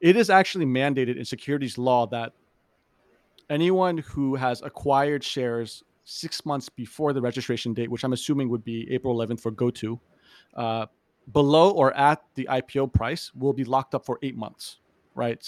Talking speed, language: 165 wpm, English